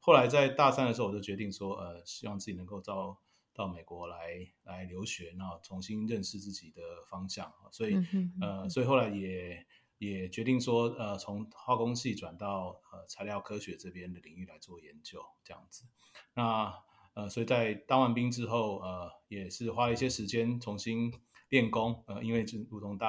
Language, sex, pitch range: Chinese, male, 95-115 Hz